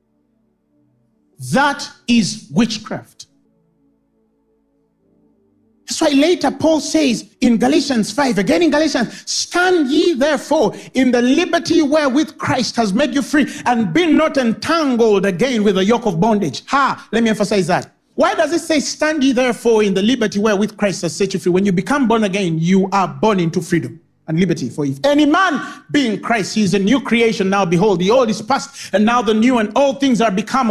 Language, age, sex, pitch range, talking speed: English, 50-69, male, 210-290 Hz, 190 wpm